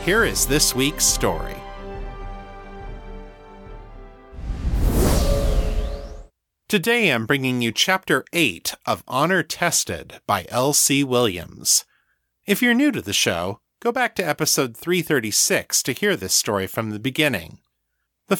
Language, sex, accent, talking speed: English, male, American, 115 wpm